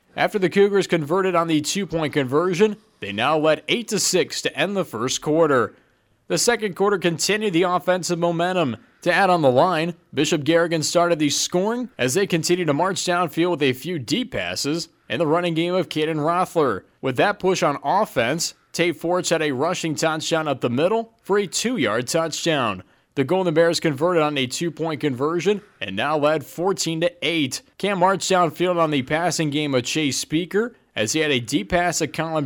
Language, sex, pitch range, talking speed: English, male, 155-190 Hz, 185 wpm